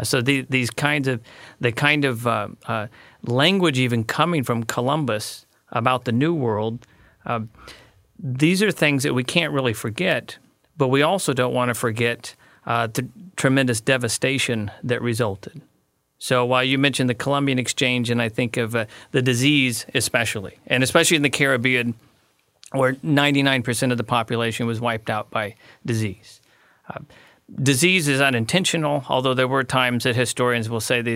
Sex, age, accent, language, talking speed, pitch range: male, 40-59, American, English, 165 wpm, 115-135 Hz